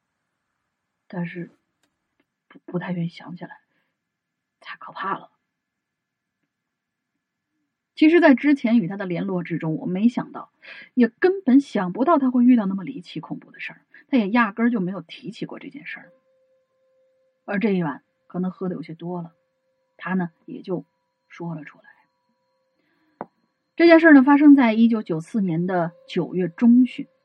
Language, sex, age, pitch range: Chinese, female, 30-49, 180-290 Hz